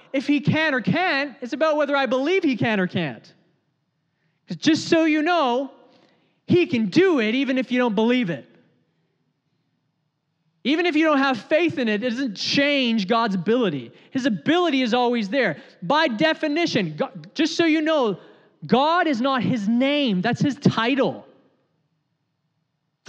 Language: English